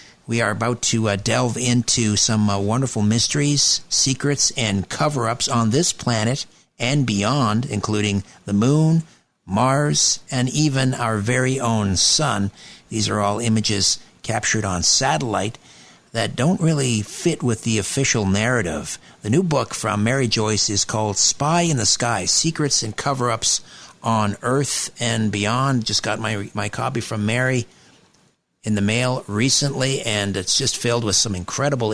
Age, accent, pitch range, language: 50-69, American, 100-125 Hz, English